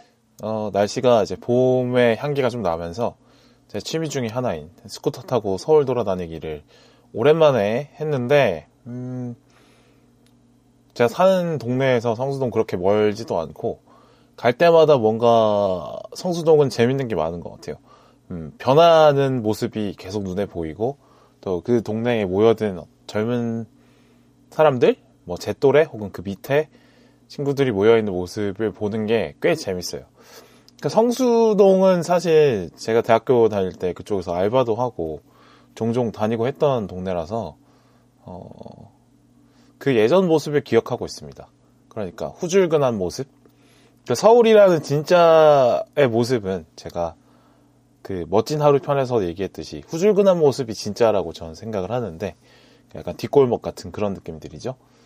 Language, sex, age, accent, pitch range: Korean, male, 20-39, native, 100-145 Hz